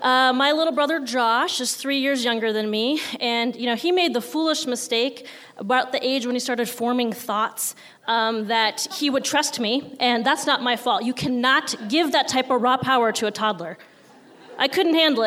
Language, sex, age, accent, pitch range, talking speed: English, female, 20-39, American, 220-270 Hz, 200 wpm